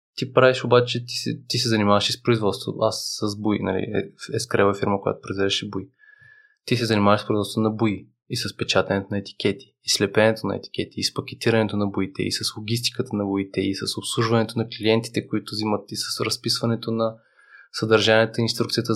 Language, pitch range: Bulgarian, 105-125 Hz